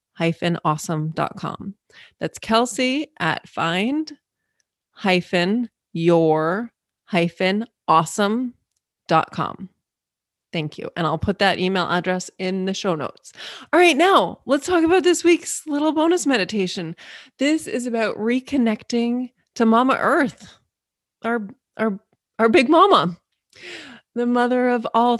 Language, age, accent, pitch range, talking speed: English, 20-39, American, 180-240 Hz, 115 wpm